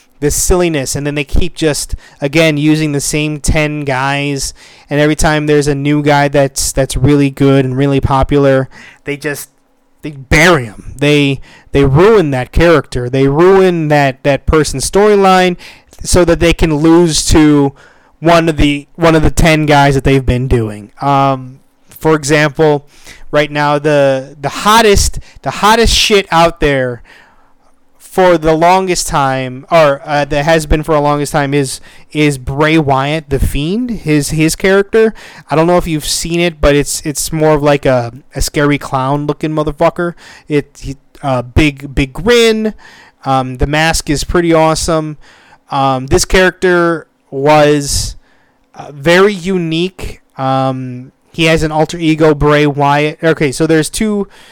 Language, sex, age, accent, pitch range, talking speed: English, male, 20-39, American, 140-165 Hz, 160 wpm